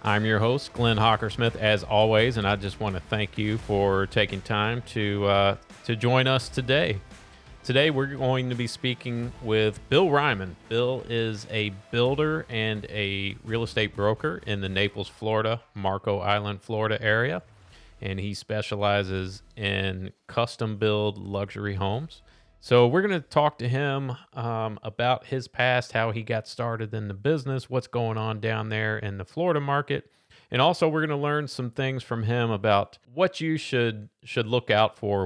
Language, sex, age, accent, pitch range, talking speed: English, male, 40-59, American, 100-125 Hz, 175 wpm